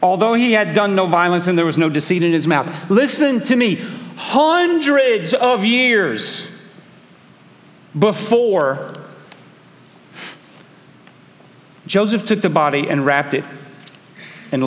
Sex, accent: male, American